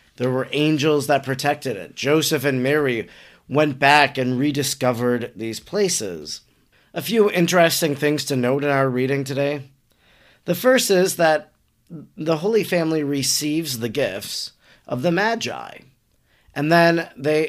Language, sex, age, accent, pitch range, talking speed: English, male, 40-59, American, 140-165 Hz, 140 wpm